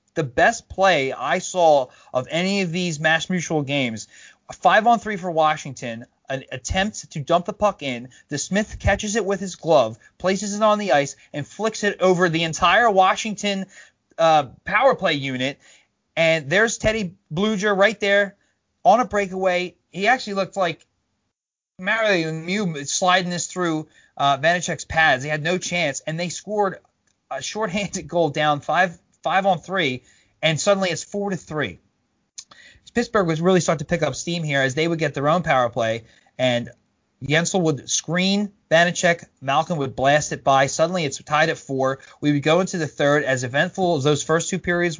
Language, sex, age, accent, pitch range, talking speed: English, male, 30-49, American, 140-185 Hz, 180 wpm